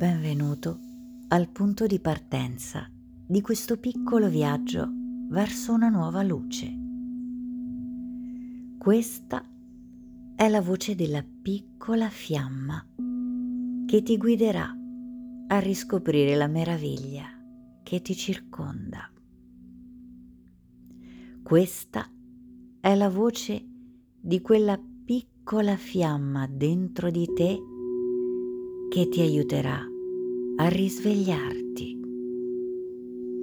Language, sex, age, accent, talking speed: Italian, female, 50-69, native, 85 wpm